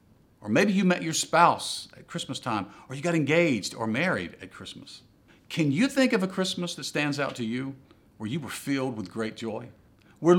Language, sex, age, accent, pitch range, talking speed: English, male, 50-69, American, 115-175 Hz, 210 wpm